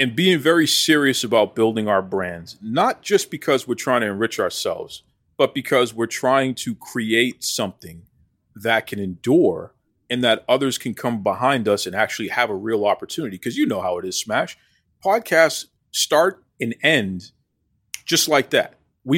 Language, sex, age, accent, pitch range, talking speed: English, male, 40-59, American, 110-155 Hz, 170 wpm